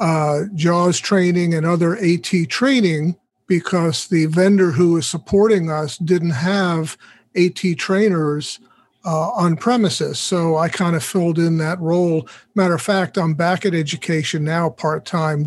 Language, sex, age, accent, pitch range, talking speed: English, male, 50-69, American, 155-185 Hz, 145 wpm